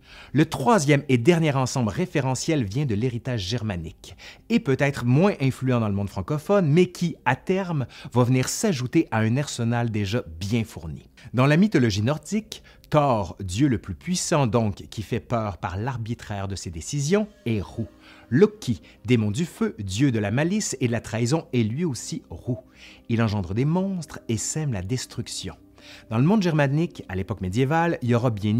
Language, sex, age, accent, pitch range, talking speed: French, male, 30-49, French, 105-150 Hz, 180 wpm